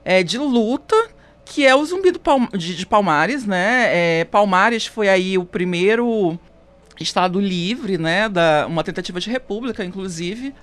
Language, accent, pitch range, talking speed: Portuguese, Brazilian, 185-250 Hz, 160 wpm